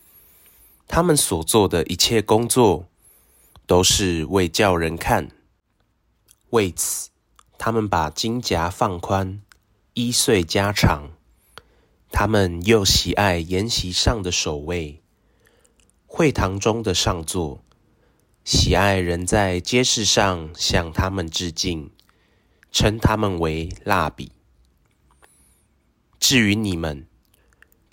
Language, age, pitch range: Chinese, 30-49, 85-105 Hz